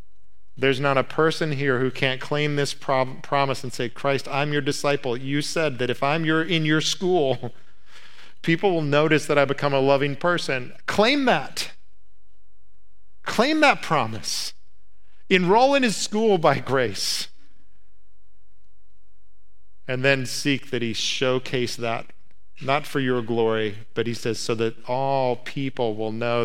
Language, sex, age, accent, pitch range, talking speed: English, male, 40-59, American, 105-140 Hz, 150 wpm